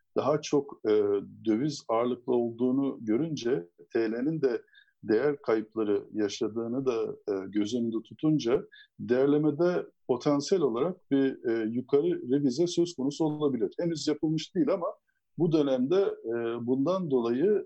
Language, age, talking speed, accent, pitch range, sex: Turkish, 50-69, 120 wpm, native, 120-180 Hz, male